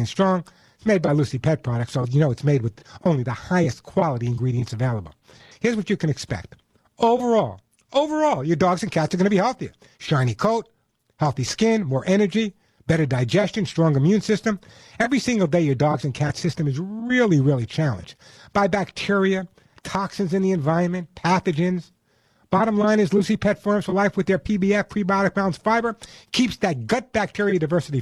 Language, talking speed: English, 180 wpm